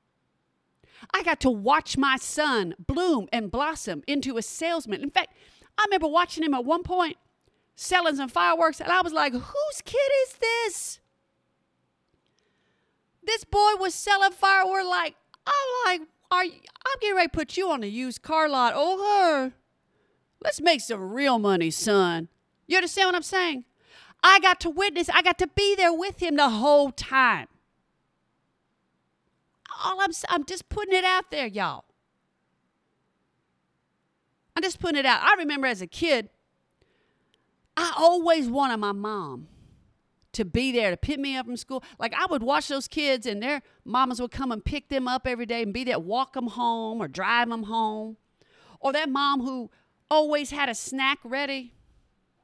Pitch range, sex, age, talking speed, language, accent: 235-350 Hz, female, 40-59, 170 wpm, English, American